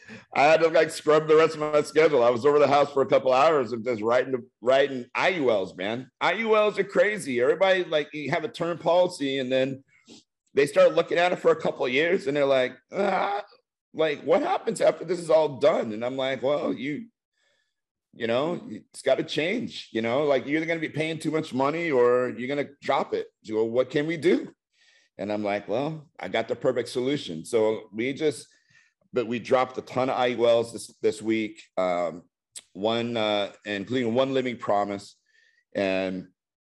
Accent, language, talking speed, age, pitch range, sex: American, English, 200 wpm, 50-69, 115-160 Hz, male